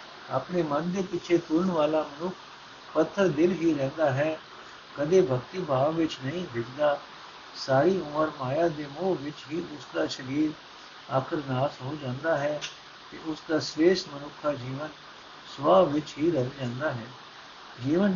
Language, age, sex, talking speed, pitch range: Punjabi, 60-79, male, 140 wpm, 135-170 Hz